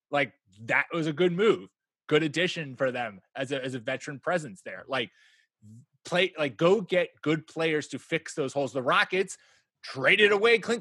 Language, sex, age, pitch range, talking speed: English, male, 20-39, 135-180 Hz, 185 wpm